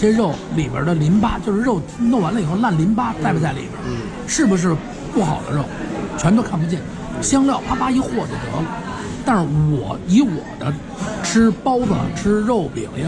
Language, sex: Chinese, male